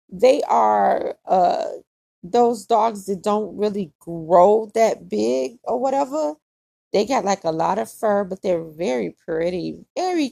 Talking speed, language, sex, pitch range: 145 wpm, English, female, 180-260 Hz